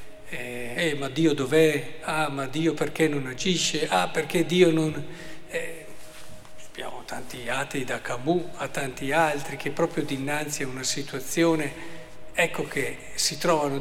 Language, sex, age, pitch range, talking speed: Italian, male, 50-69, 140-170 Hz, 150 wpm